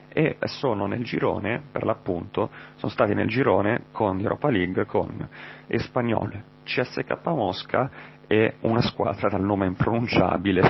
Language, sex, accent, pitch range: Italian, male, native, 95-120 Hz